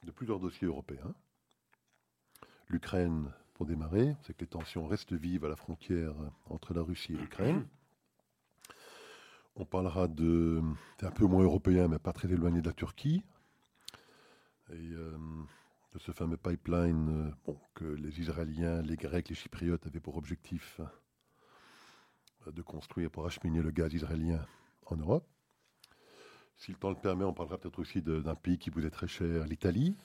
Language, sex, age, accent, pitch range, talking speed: French, male, 50-69, French, 80-95 Hz, 155 wpm